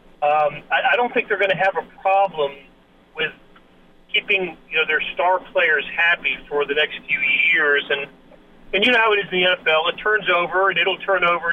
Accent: American